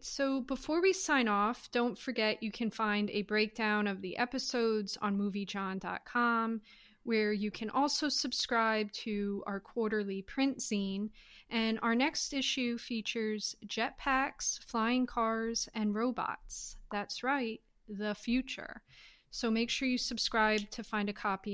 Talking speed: 140 wpm